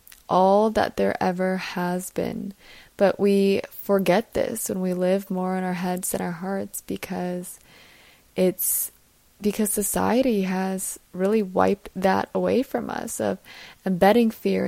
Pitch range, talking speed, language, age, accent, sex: 185-200 Hz, 140 wpm, English, 20-39, American, female